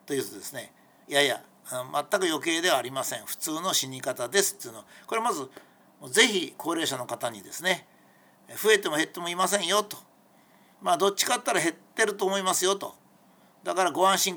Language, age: Japanese, 60-79